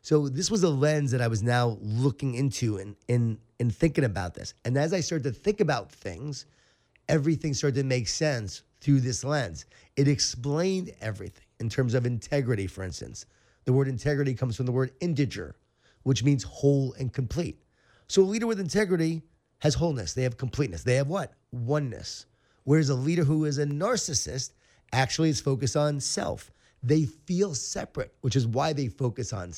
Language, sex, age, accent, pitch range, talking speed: English, male, 30-49, American, 115-150 Hz, 185 wpm